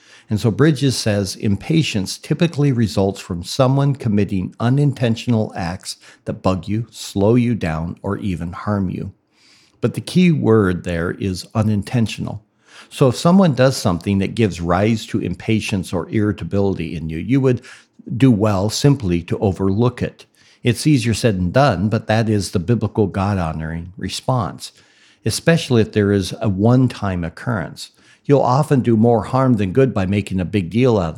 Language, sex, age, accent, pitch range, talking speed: English, male, 50-69, American, 95-120 Hz, 160 wpm